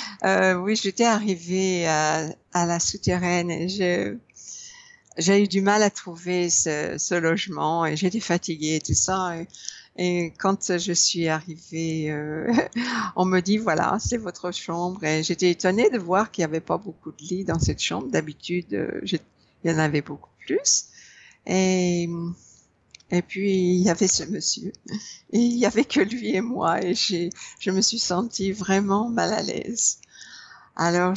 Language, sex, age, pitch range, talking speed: English, female, 60-79, 170-200 Hz, 175 wpm